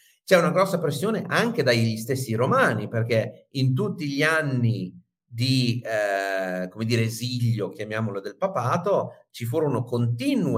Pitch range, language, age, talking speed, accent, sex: 110-135 Hz, Italian, 40-59, 135 wpm, native, male